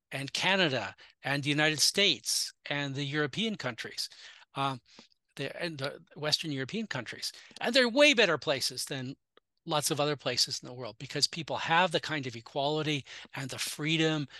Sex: male